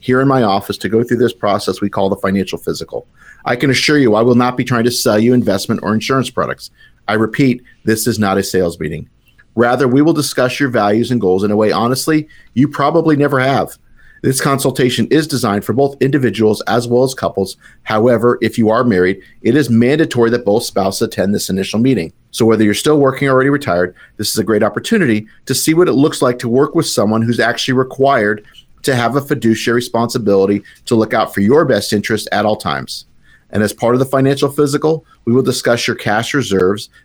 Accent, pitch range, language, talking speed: American, 105-130 Hz, English, 215 wpm